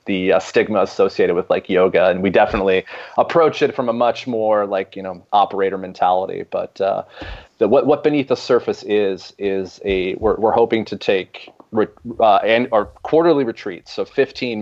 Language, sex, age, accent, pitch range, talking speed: English, male, 30-49, American, 95-110 Hz, 185 wpm